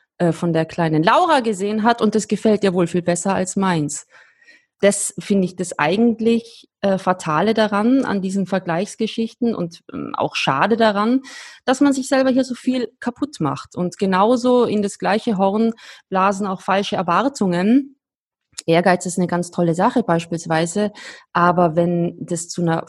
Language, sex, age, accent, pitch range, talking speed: German, female, 20-39, German, 170-220 Hz, 165 wpm